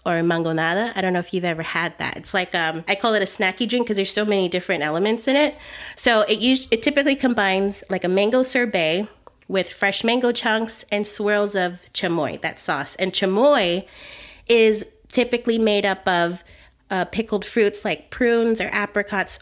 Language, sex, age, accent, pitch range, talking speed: English, female, 30-49, American, 185-230 Hz, 190 wpm